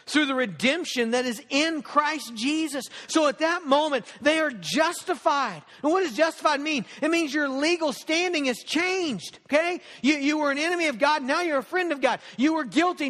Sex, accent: male, American